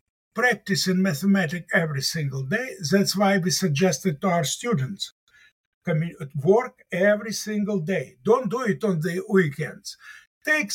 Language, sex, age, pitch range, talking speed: English, male, 60-79, 185-235 Hz, 135 wpm